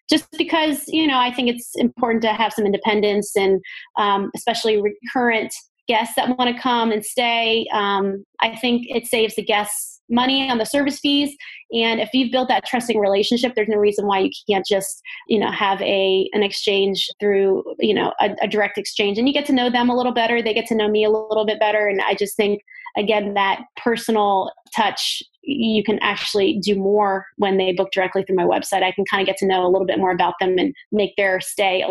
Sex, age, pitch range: female, 20-39, 200-250 Hz